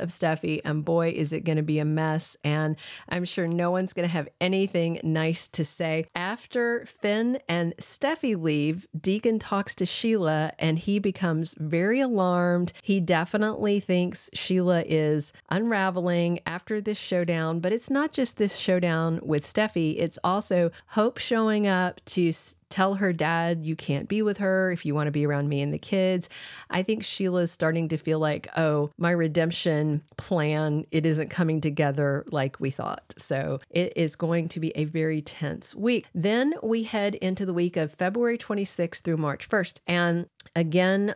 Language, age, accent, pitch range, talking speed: English, 40-59, American, 160-195 Hz, 175 wpm